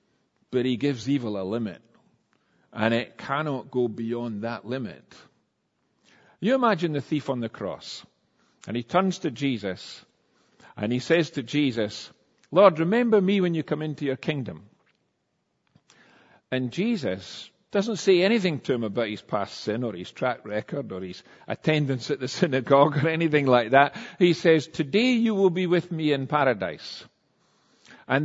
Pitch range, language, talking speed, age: 130-200 Hz, English, 160 wpm, 50-69